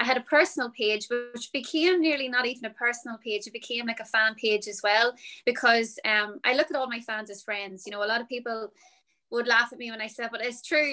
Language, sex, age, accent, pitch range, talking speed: English, female, 20-39, Irish, 210-250 Hz, 260 wpm